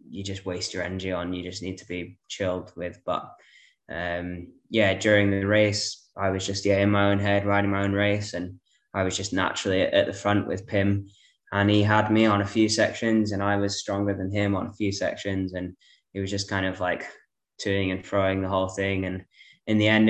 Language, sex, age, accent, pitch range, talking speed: English, male, 10-29, British, 95-105 Hz, 225 wpm